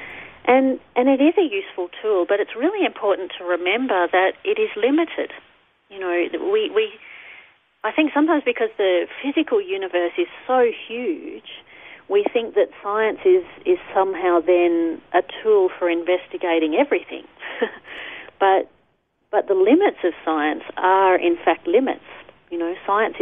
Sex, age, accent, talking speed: female, 40-59, Australian, 145 wpm